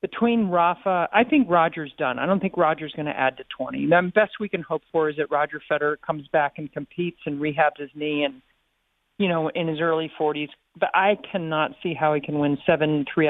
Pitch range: 155-195 Hz